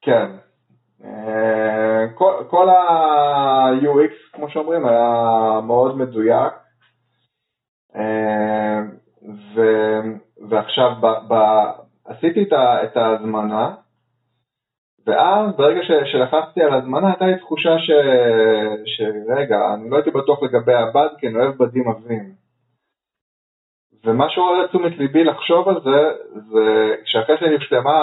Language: Hebrew